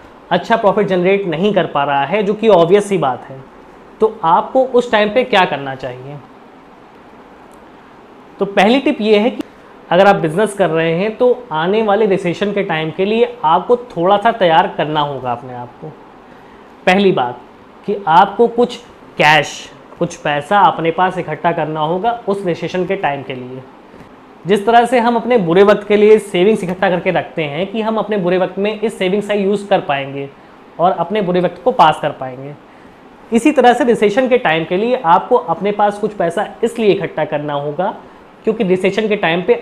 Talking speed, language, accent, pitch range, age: 190 wpm, Hindi, native, 165-215 Hz, 20-39